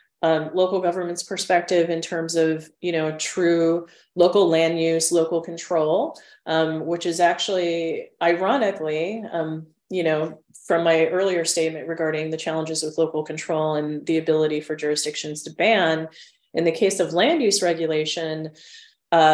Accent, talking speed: American, 150 wpm